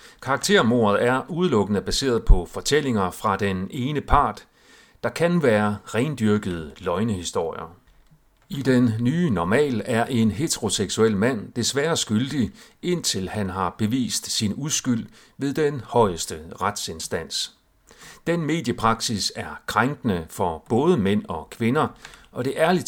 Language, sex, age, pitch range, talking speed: Danish, male, 40-59, 100-140 Hz, 125 wpm